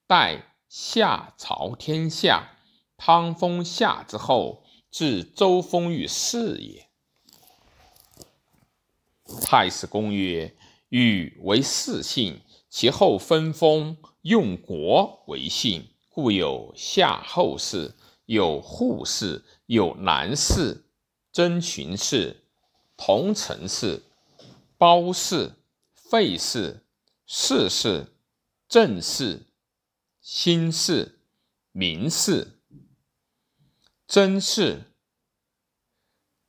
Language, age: Chinese, 50-69